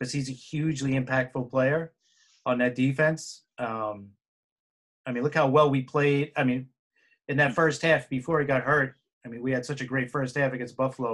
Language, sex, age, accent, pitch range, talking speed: English, male, 30-49, American, 125-160 Hz, 205 wpm